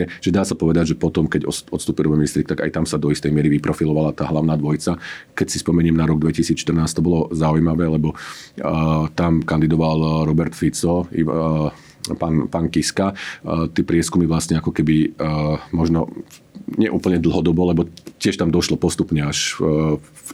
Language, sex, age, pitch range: Slovak, male, 40-59, 80-85 Hz